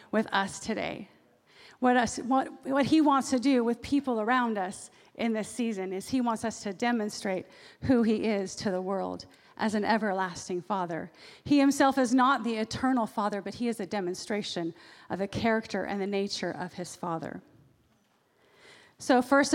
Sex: female